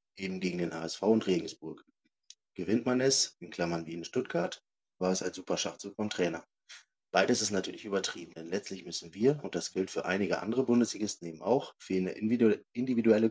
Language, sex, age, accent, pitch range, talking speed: German, male, 30-49, German, 85-110 Hz, 180 wpm